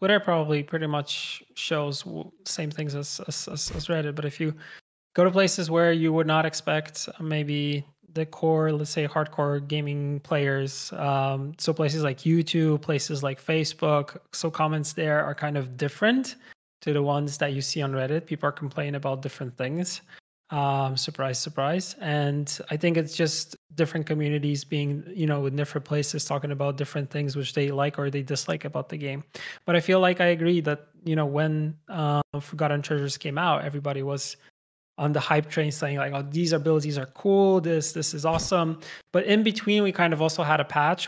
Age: 20-39